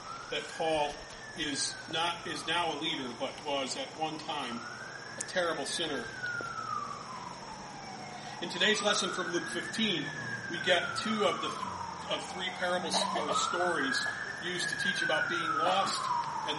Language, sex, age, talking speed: English, male, 40-59, 140 wpm